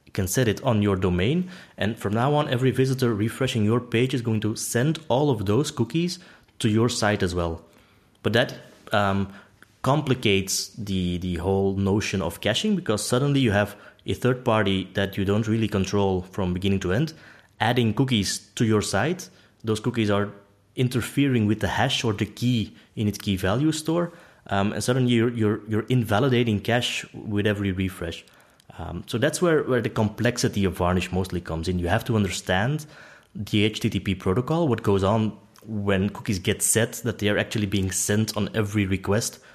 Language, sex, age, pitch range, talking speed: English, male, 20-39, 95-120 Hz, 180 wpm